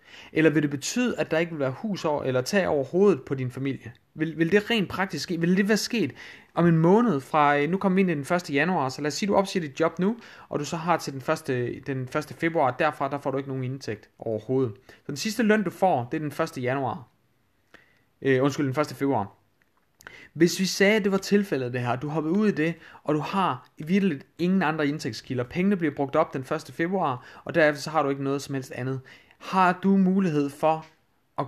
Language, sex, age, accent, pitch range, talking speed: Danish, male, 30-49, native, 130-165 Hz, 240 wpm